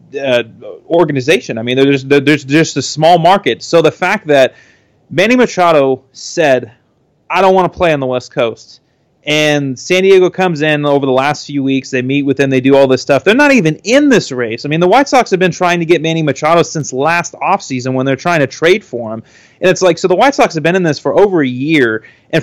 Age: 30-49